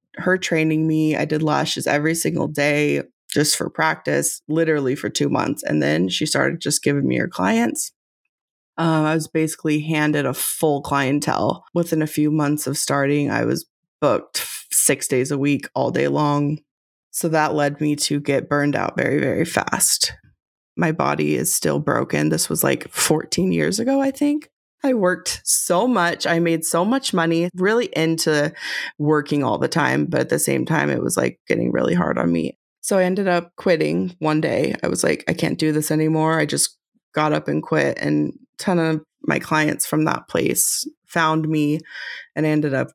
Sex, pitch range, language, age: female, 145-170 Hz, English, 20-39